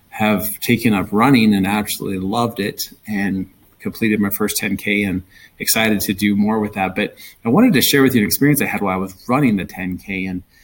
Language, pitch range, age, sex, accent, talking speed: English, 105-120 Hz, 30-49, male, American, 215 wpm